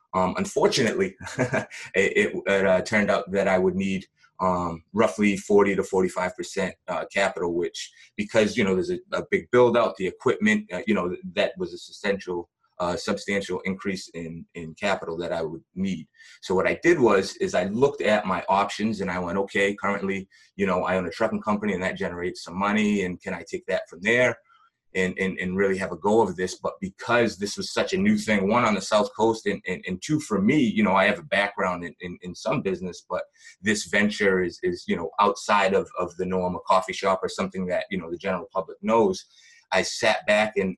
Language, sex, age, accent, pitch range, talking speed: English, male, 30-49, American, 95-130 Hz, 220 wpm